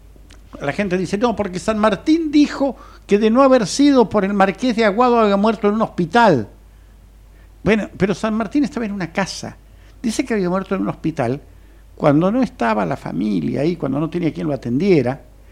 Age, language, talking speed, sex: 60-79, Spanish, 195 wpm, male